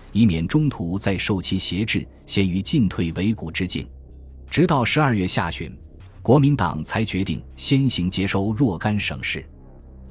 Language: Chinese